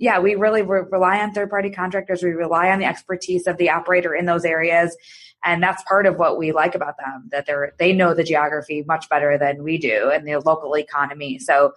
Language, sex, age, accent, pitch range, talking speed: English, female, 20-39, American, 145-180 Hz, 225 wpm